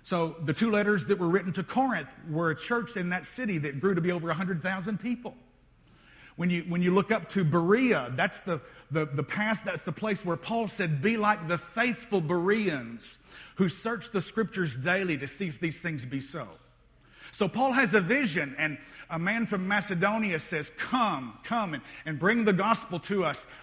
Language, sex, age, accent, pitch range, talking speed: English, male, 50-69, American, 165-215 Hz, 195 wpm